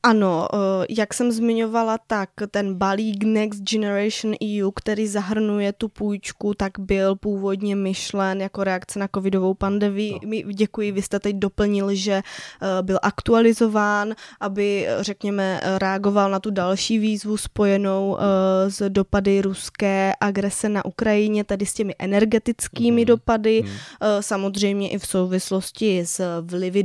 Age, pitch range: 20-39, 190-220 Hz